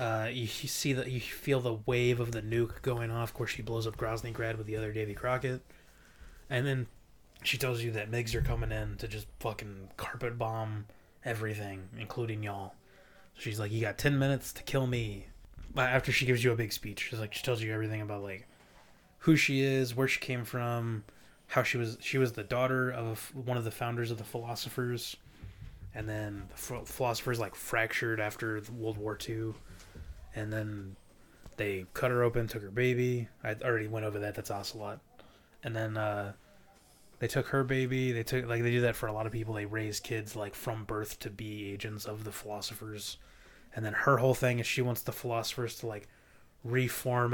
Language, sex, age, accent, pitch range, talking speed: English, male, 20-39, American, 105-125 Hz, 205 wpm